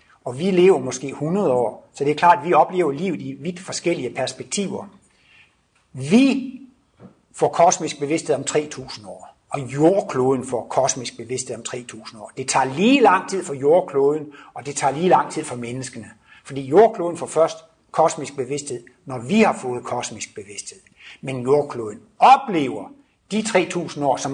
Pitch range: 130-180 Hz